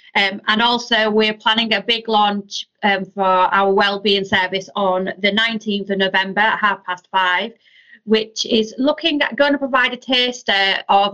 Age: 30-49